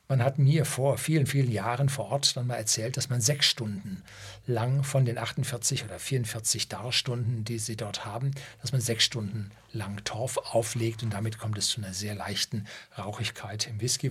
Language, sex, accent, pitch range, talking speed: German, male, German, 105-130 Hz, 190 wpm